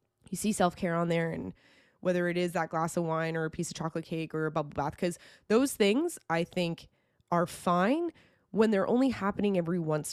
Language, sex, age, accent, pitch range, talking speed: English, female, 20-39, American, 155-190 Hz, 215 wpm